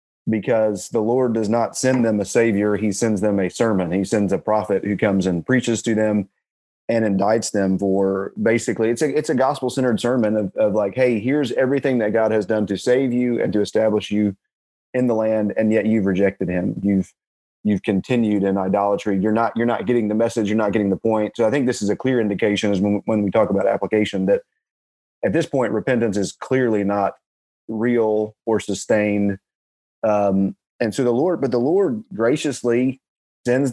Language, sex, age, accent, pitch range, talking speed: English, male, 30-49, American, 105-120 Hz, 205 wpm